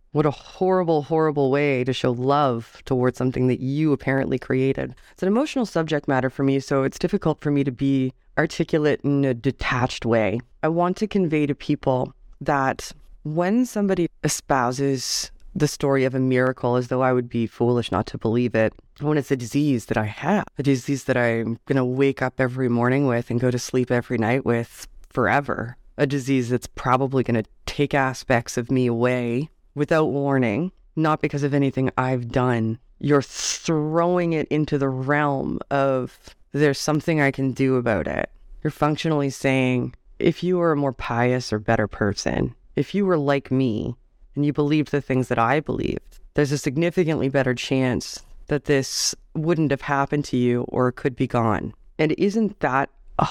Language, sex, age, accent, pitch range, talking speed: English, female, 20-39, American, 125-150 Hz, 180 wpm